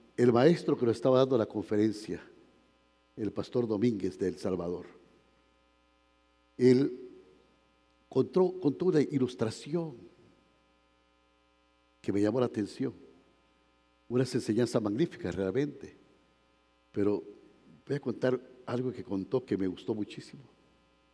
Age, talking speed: 60-79, 110 wpm